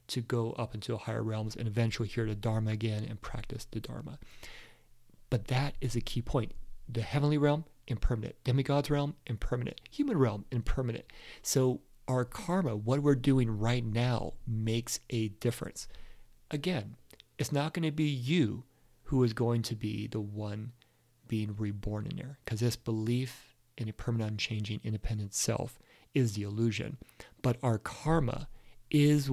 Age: 40-59